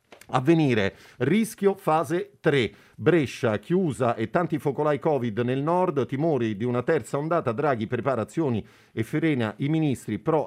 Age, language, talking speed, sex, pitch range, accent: 40-59, Italian, 140 wpm, male, 110-150 Hz, native